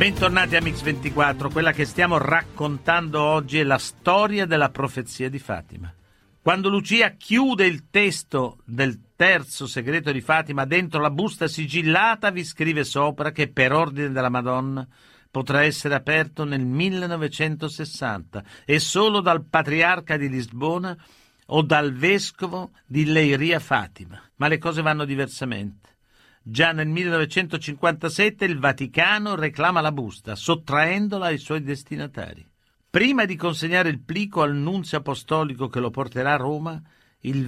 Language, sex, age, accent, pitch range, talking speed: Italian, male, 50-69, native, 135-165 Hz, 135 wpm